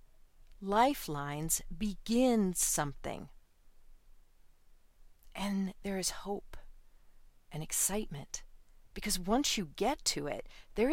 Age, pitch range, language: 40-59, 150-200 Hz, English